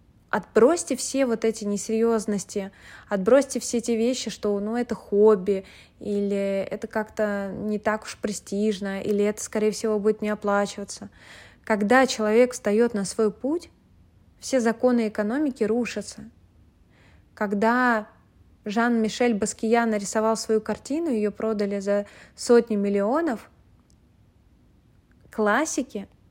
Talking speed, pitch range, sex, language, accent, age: 110 wpm, 200-230 Hz, female, Russian, native, 20-39